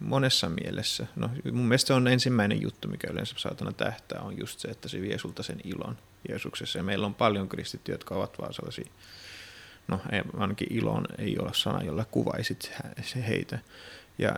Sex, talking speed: male, 180 wpm